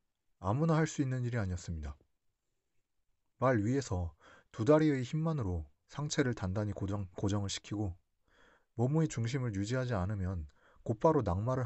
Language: Korean